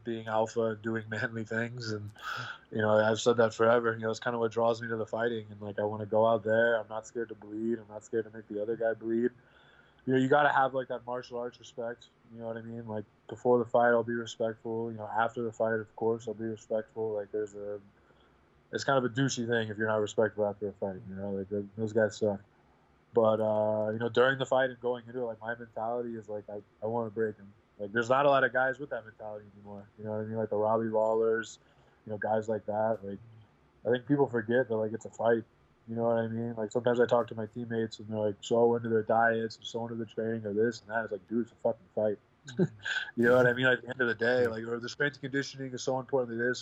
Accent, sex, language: American, male, English